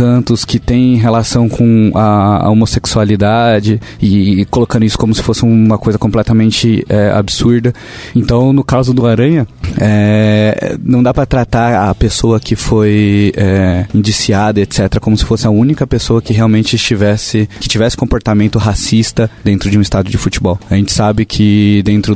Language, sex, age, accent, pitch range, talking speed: Portuguese, male, 20-39, Brazilian, 100-115 Hz, 165 wpm